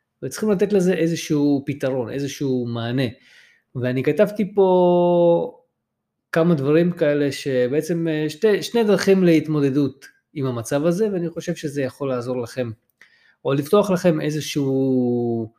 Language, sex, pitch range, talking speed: Hebrew, male, 130-170 Hz, 120 wpm